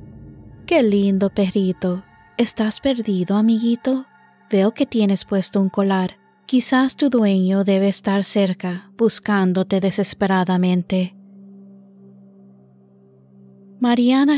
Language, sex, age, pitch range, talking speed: Spanish, female, 30-49, 180-215 Hz, 90 wpm